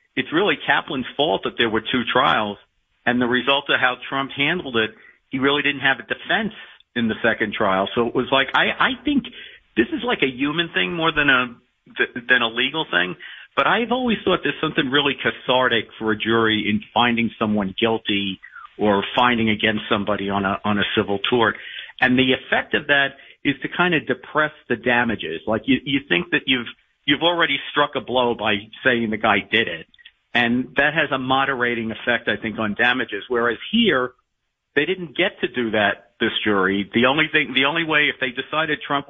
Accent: American